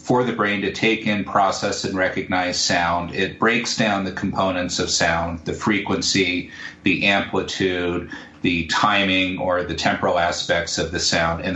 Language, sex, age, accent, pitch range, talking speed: English, male, 40-59, American, 90-105 Hz, 160 wpm